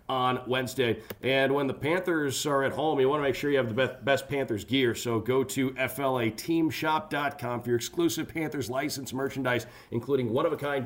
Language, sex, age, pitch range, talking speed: English, male, 40-59, 125-155 Hz, 180 wpm